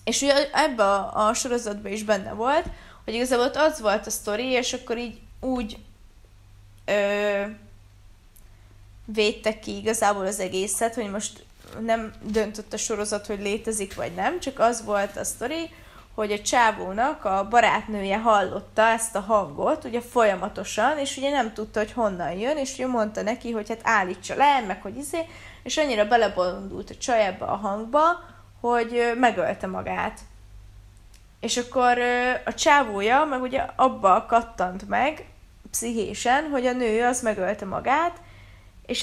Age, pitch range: 20-39, 200-245 Hz